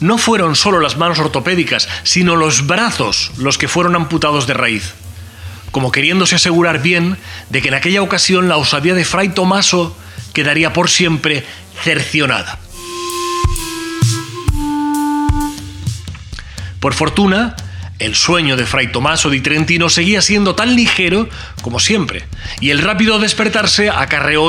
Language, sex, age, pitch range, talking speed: Spanish, male, 30-49, 125-180 Hz, 130 wpm